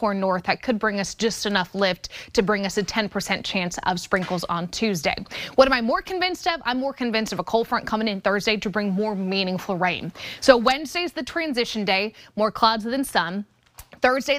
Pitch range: 195-250 Hz